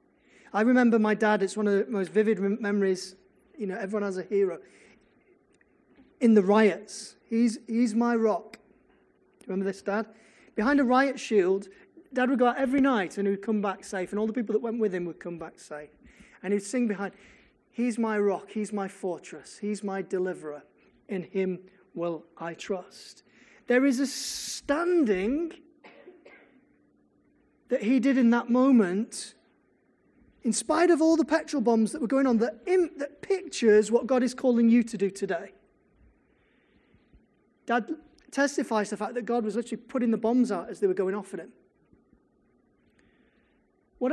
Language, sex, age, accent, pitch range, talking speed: English, male, 30-49, British, 200-265 Hz, 175 wpm